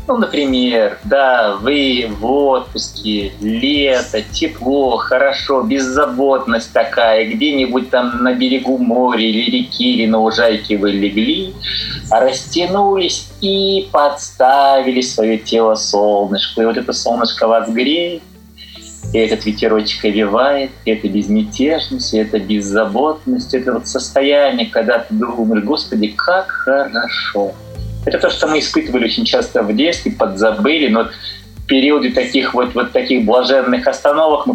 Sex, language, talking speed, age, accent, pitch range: male, Russian, 130 wpm, 20-39, native, 110-150 Hz